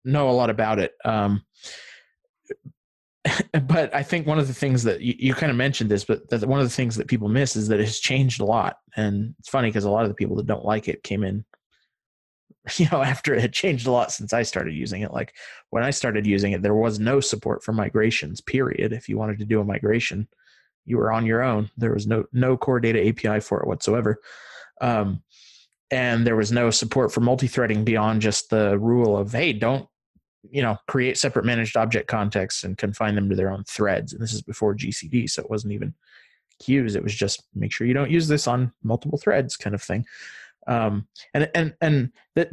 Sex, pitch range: male, 105-135 Hz